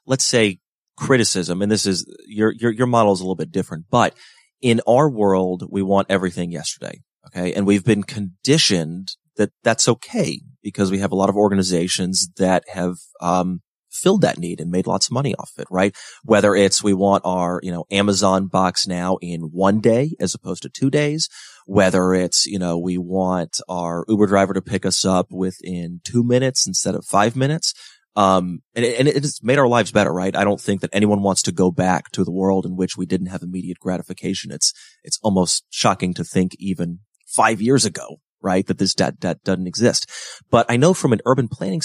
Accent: American